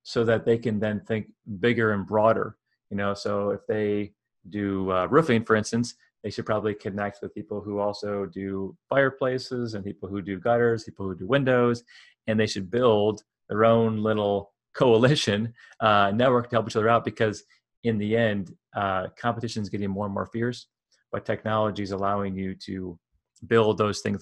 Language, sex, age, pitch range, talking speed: English, male, 30-49, 100-120 Hz, 185 wpm